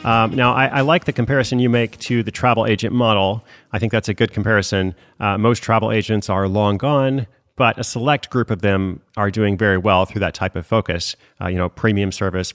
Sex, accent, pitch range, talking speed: male, American, 90-115 Hz, 225 wpm